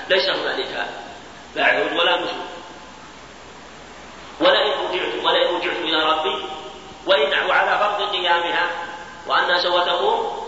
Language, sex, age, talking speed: Arabic, male, 40-59, 110 wpm